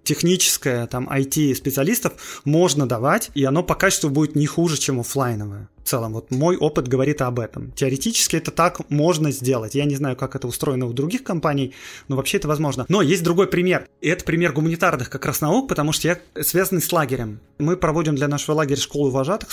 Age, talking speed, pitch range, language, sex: 20-39, 195 wpm, 135-170 Hz, Russian, male